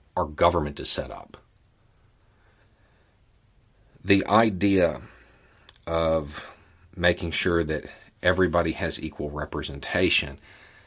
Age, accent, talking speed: 40-59, American, 85 wpm